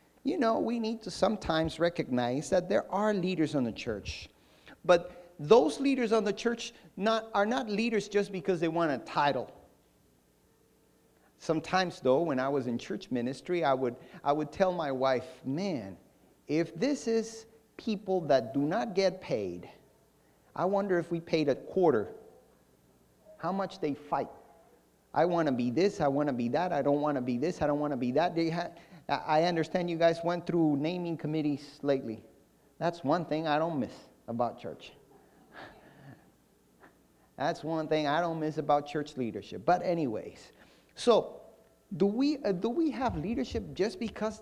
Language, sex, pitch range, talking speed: English, male, 145-205 Hz, 170 wpm